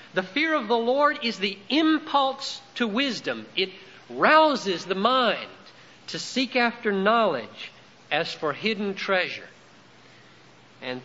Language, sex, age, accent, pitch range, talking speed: English, male, 50-69, American, 185-250 Hz, 125 wpm